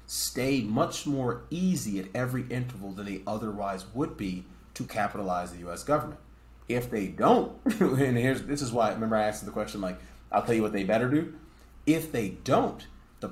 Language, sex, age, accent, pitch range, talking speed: English, male, 30-49, American, 90-115 Hz, 190 wpm